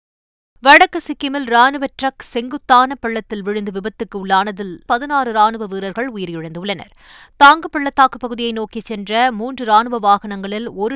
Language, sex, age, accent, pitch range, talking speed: Tamil, female, 20-39, native, 215-260 Hz, 115 wpm